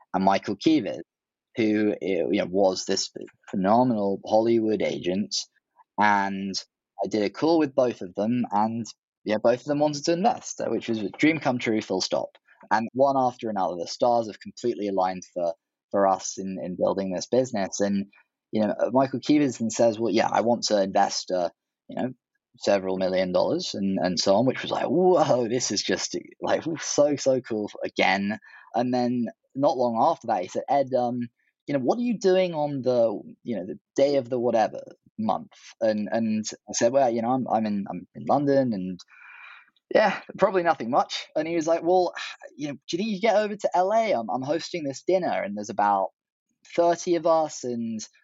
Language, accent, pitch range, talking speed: English, British, 105-145 Hz, 200 wpm